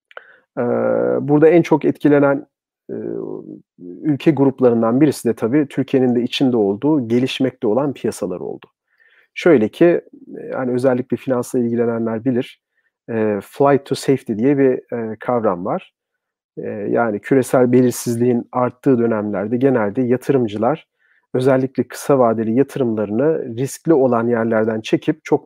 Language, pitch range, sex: Turkish, 115-145 Hz, male